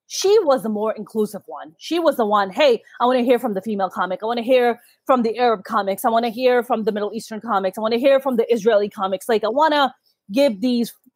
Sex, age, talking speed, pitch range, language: female, 20-39, 270 wpm, 215-275 Hz, English